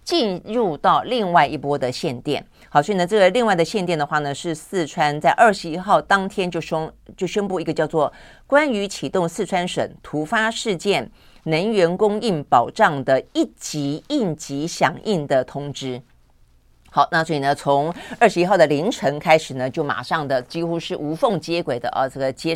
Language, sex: Chinese, female